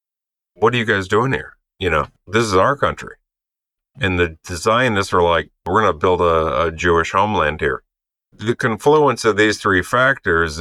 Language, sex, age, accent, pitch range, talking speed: English, male, 50-69, American, 85-105 Hz, 180 wpm